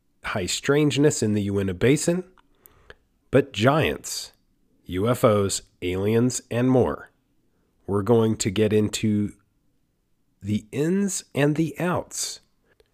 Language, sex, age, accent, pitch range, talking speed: English, male, 40-59, American, 100-125 Hz, 100 wpm